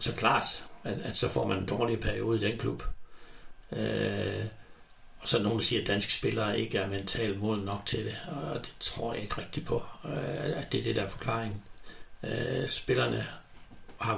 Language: Danish